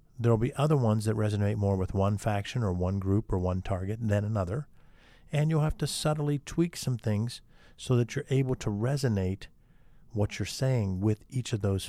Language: English